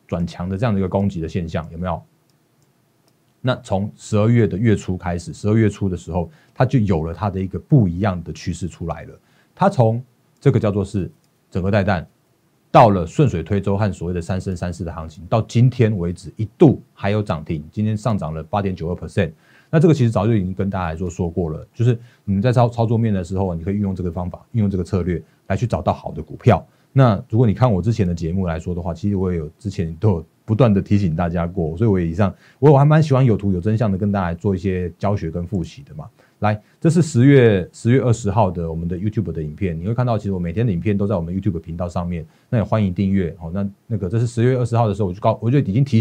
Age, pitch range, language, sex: 30-49, 90-115 Hz, Chinese, male